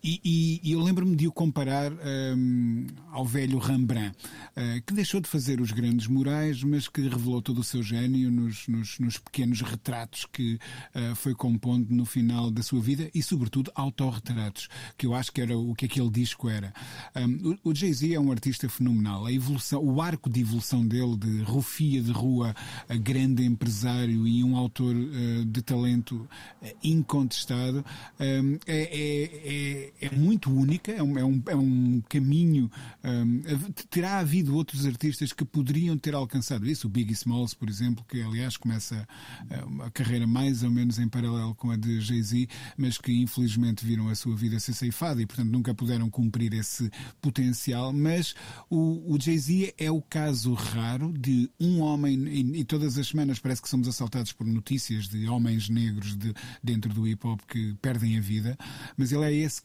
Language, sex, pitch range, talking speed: Portuguese, male, 120-140 Hz, 175 wpm